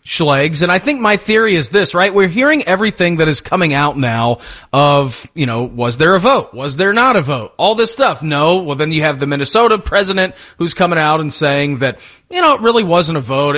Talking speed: 235 wpm